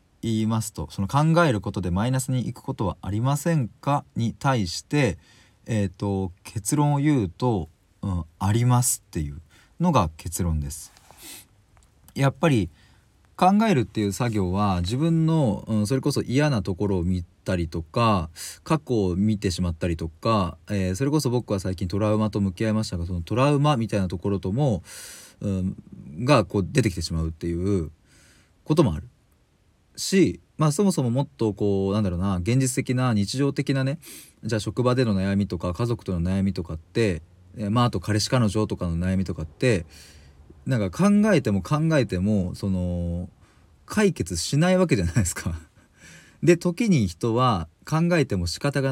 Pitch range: 90-130 Hz